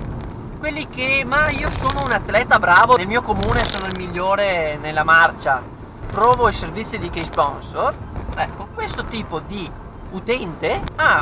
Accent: native